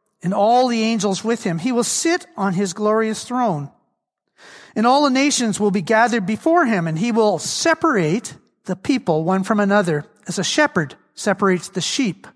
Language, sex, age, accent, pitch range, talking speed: English, male, 40-59, American, 195-265 Hz, 180 wpm